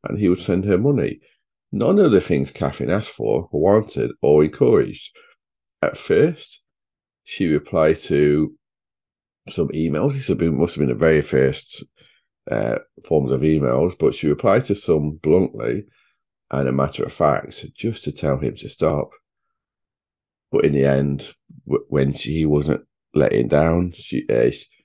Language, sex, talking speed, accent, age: English, male, 155 wpm, British, 40-59